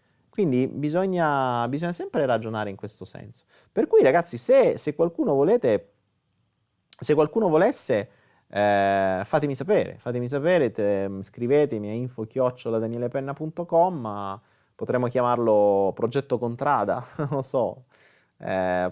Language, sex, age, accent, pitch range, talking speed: Italian, male, 30-49, native, 100-140 Hz, 110 wpm